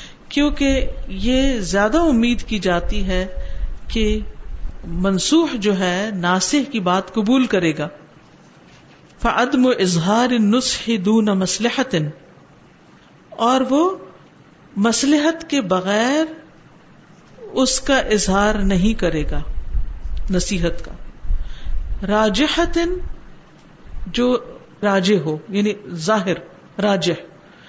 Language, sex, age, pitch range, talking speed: Urdu, female, 50-69, 185-270 Hz, 90 wpm